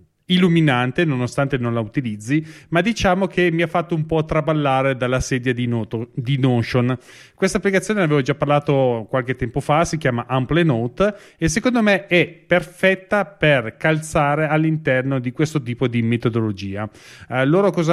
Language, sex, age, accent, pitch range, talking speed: Italian, male, 30-49, native, 130-175 Hz, 155 wpm